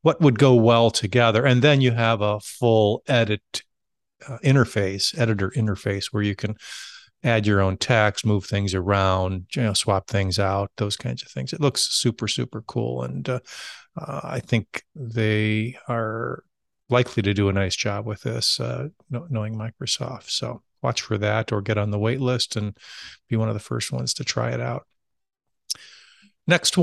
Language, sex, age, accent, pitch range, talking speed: English, male, 50-69, American, 105-120 Hz, 175 wpm